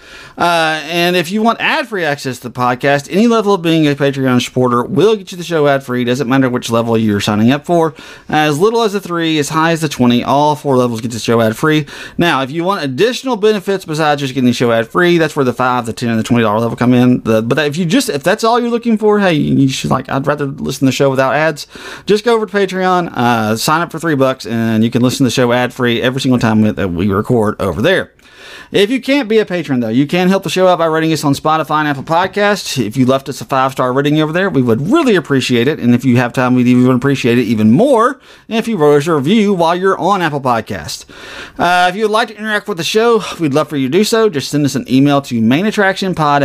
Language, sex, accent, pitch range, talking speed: English, male, American, 125-175 Hz, 265 wpm